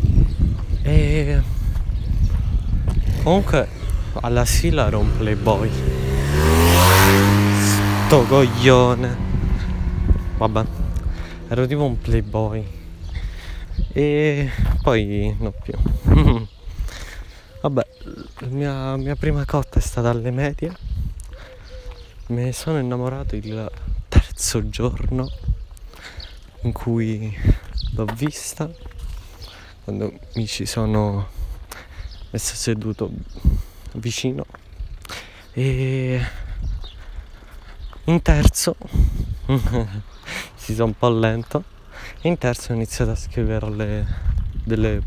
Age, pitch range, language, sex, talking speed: 20-39, 85-125 Hz, Italian, male, 85 wpm